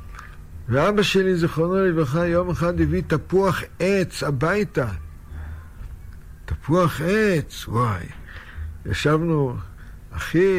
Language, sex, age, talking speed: Hebrew, male, 60-79, 85 wpm